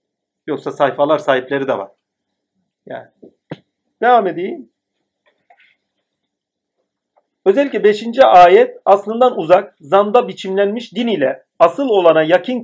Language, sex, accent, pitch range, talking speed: Turkish, male, native, 150-205 Hz, 95 wpm